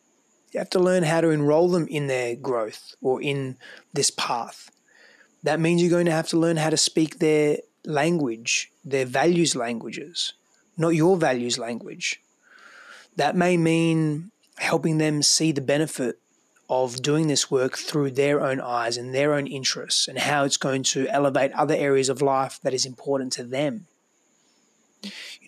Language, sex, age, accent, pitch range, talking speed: English, male, 20-39, Australian, 130-155 Hz, 165 wpm